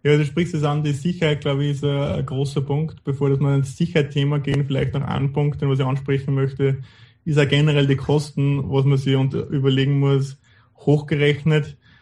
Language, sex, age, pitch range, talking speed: English, male, 20-39, 125-145 Hz, 200 wpm